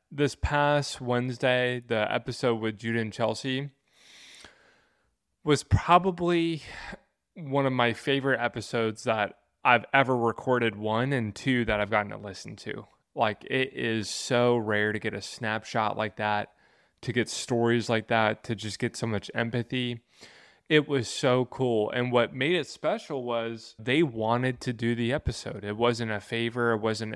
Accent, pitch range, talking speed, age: American, 110-125 Hz, 160 wpm, 20-39